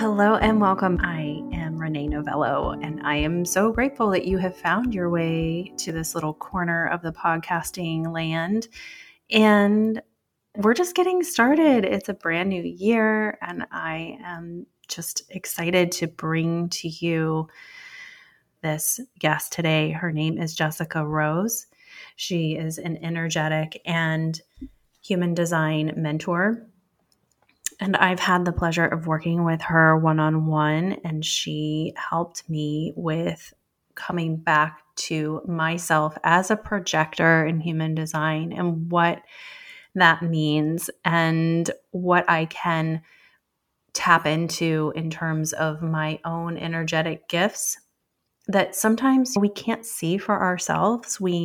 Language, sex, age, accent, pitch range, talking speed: English, female, 30-49, American, 160-195 Hz, 130 wpm